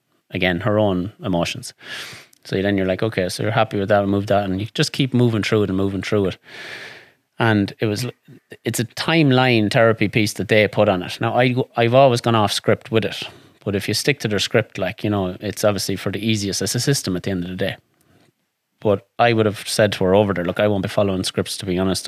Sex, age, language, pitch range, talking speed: male, 30-49, English, 100-115 Hz, 250 wpm